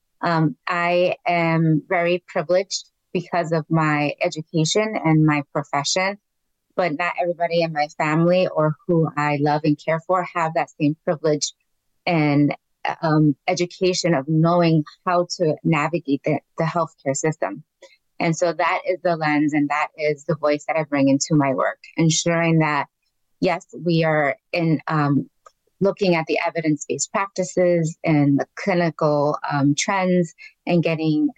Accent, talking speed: American, 145 wpm